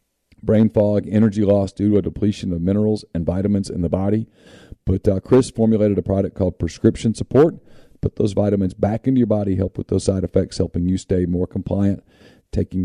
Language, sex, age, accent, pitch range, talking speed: English, male, 40-59, American, 95-115 Hz, 195 wpm